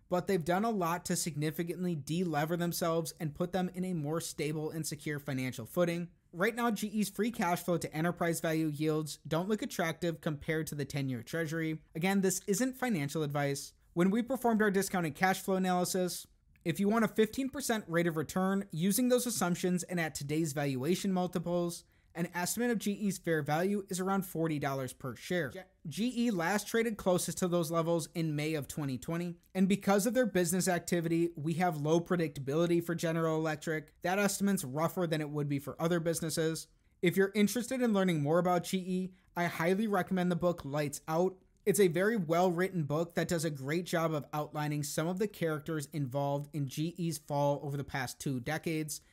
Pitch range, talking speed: 155-185 Hz, 185 wpm